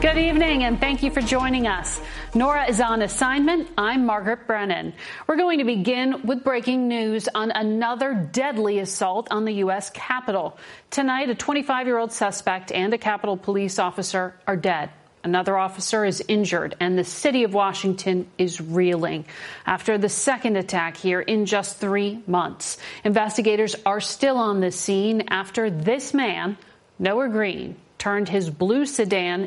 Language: English